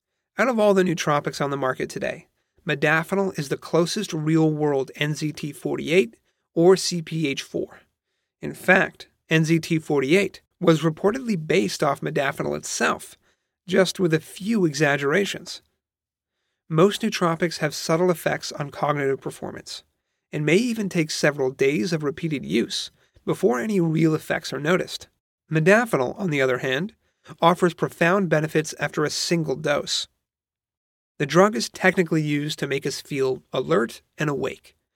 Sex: male